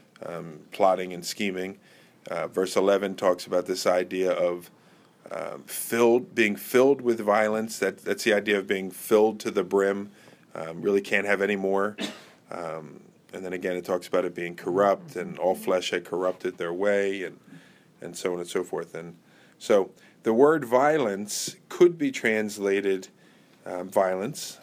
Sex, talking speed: male, 165 wpm